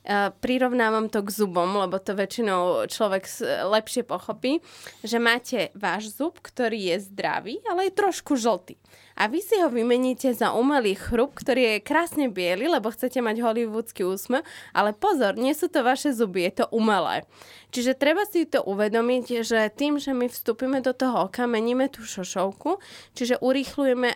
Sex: female